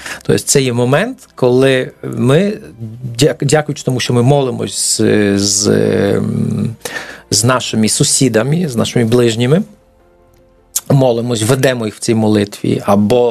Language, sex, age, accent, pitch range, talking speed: Ukrainian, male, 40-59, native, 110-150 Hz, 125 wpm